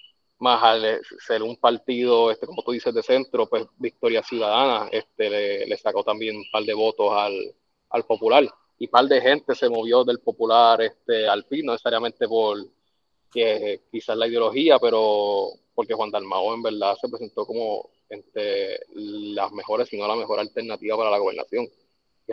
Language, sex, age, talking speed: Spanish, male, 20-39, 175 wpm